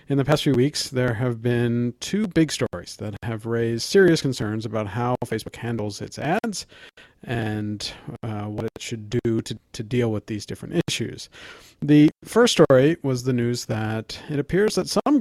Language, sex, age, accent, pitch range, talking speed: English, male, 50-69, American, 115-145 Hz, 180 wpm